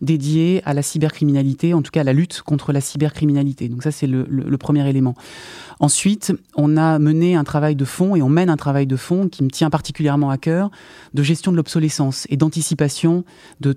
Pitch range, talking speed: 135-165 Hz, 215 wpm